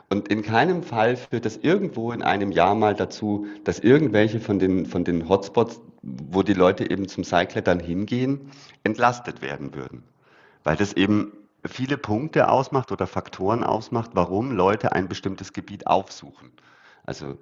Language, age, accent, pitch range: German, 50-69, German, 95-120 Hz